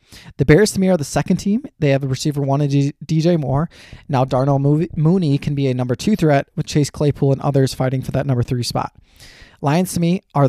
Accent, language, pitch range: American, English, 135-160 Hz